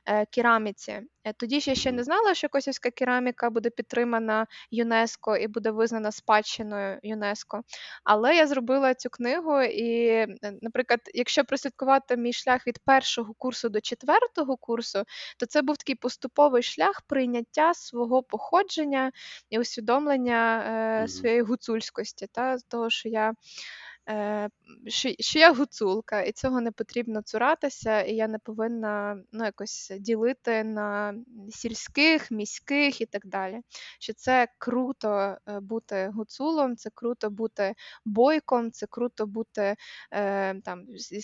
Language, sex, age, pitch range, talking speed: Ukrainian, female, 20-39, 215-260 Hz, 130 wpm